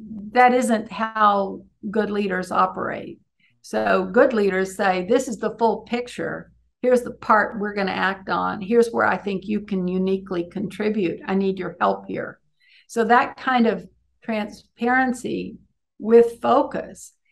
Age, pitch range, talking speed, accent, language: 60-79, 195-245 Hz, 150 wpm, American, English